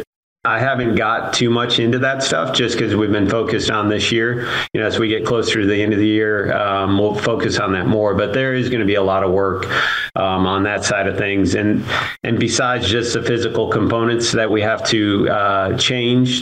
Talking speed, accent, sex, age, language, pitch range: 230 wpm, American, male, 40-59, English, 100-115 Hz